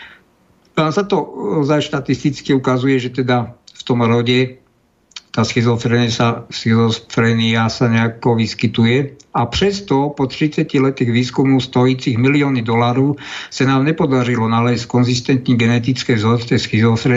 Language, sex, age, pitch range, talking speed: Slovak, male, 50-69, 125-140 Hz, 110 wpm